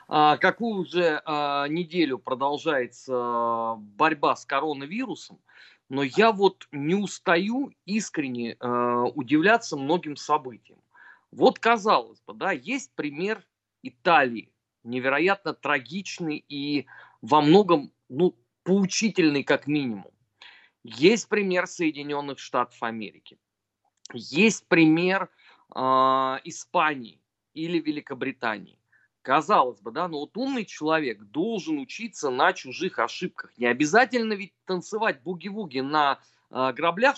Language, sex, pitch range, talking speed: Russian, male, 135-190 Hz, 100 wpm